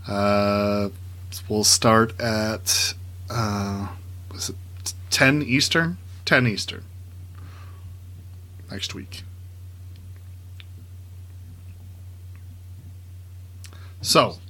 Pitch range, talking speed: 90-110 Hz, 55 wpm